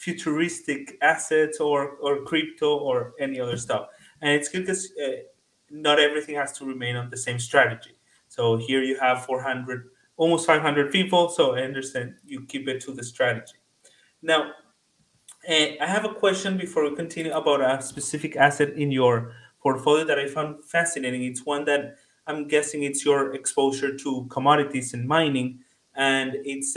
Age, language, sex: 30-49, English, male